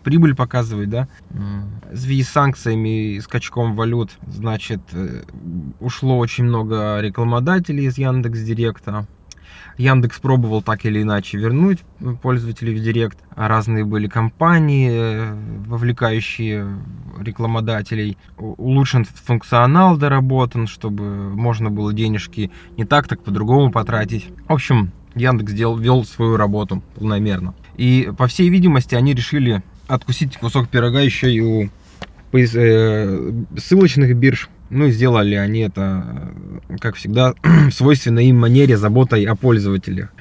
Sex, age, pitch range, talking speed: male, 20-39, 105-125 Hz, 120 wpm